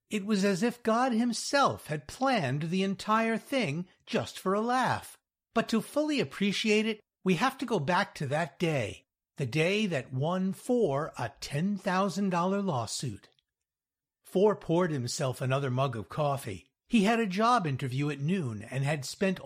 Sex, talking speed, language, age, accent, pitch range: male, 165 wpm, English, 60-79, American, 140-205 Hz